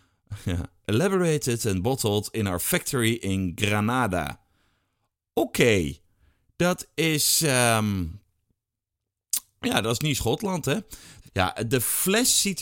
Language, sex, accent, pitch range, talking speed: Dutch, male, Dutch, 105-145 Hz, 115 wpm